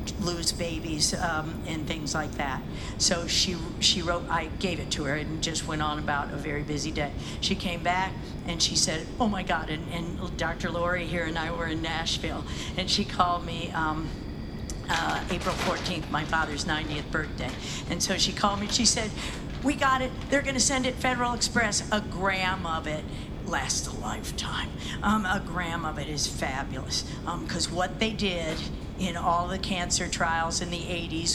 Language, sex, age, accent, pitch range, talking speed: English, female, 50-69, American, 170-195 Hz, 190 wpm